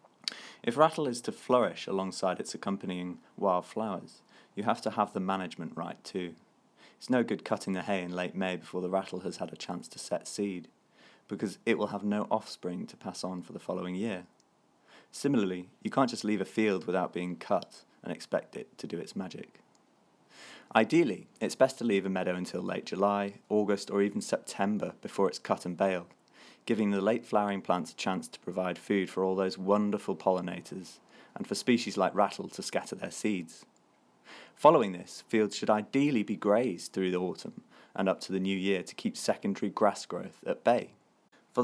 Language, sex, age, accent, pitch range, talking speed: English, male, 20-39, British, 90-105 Hz, 190 wpm